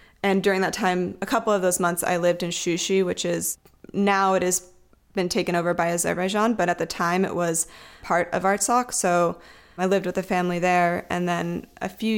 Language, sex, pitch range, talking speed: English, female, 170-190 Hz, 210 wpm